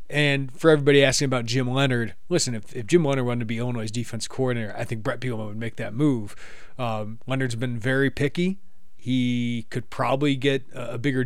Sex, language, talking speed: male, English, 205 wpm